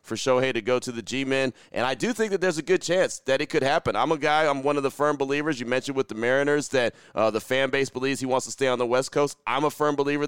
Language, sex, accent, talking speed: English, male, American, 305 wpm